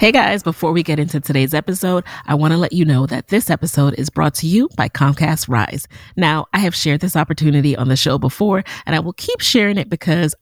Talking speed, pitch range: 230 wpm, 140-190 Hz